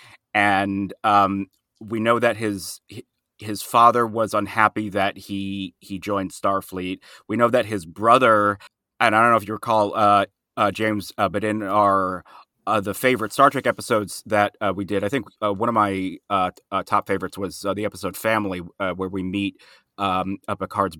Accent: American